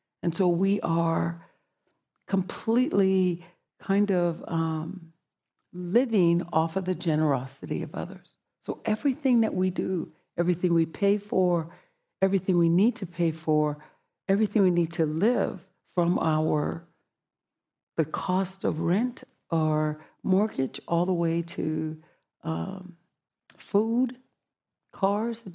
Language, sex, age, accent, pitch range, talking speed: English, female, 60-79, American, 160-195 Hz, 120 wpm